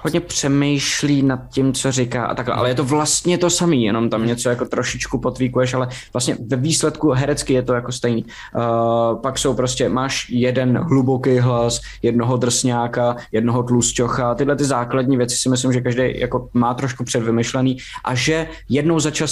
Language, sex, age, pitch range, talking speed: Czech, male, 20-39, 120-145 Hz, 180 wpm